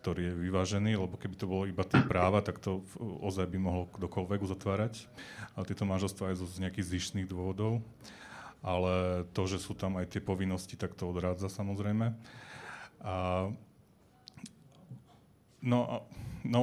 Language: Slovak